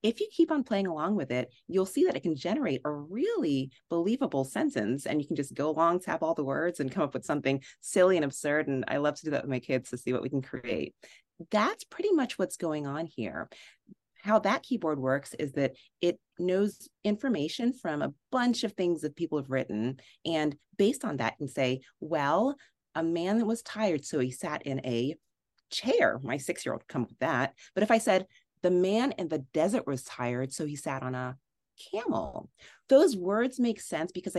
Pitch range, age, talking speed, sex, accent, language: 140-200 Hz, 30-49, 210 wpm, female, American, English